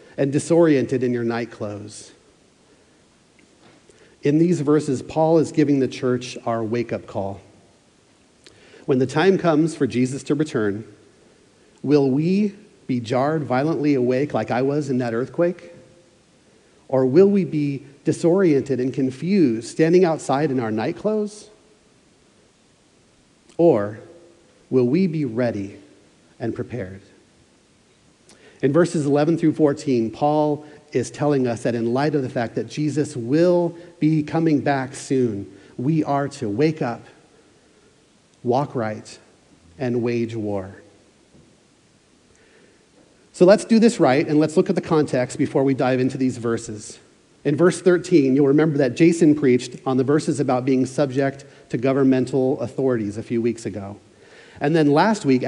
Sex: male